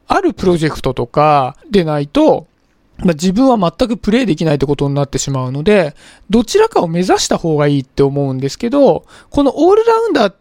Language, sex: Japanese, male